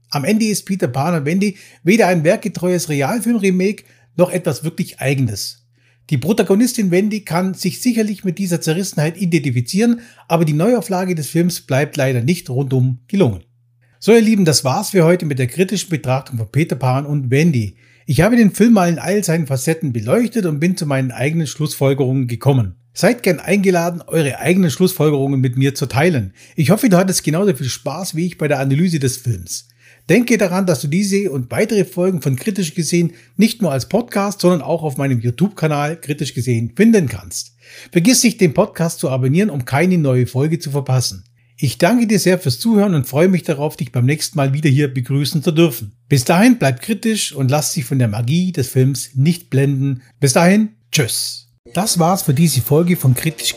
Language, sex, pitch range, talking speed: German, male, 130-185 Hz, 190 wpm